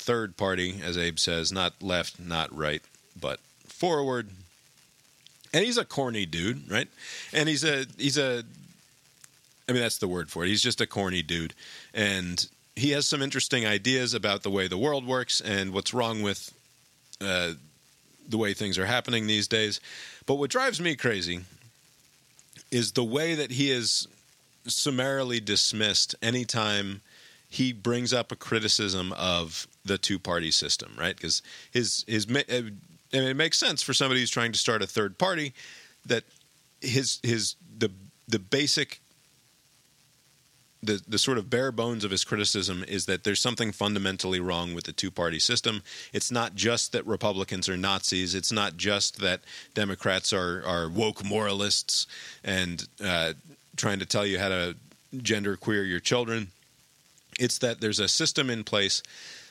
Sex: male